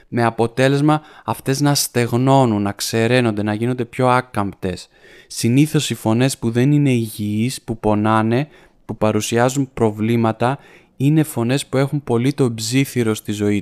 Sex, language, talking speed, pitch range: male, Greek, 140 wpm, 110-135 Hz